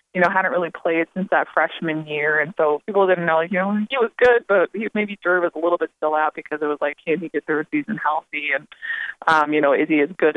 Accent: American